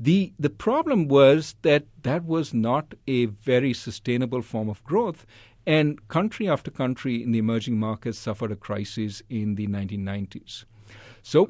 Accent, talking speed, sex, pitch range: Indian, 150 wpm, male, 110-145 Hz